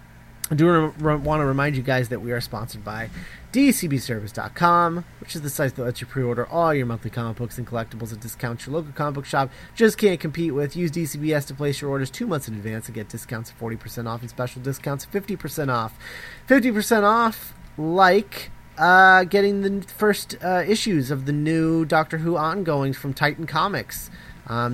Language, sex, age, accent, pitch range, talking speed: English, male, 30-49, American, 120-160 Hz, 190 wpm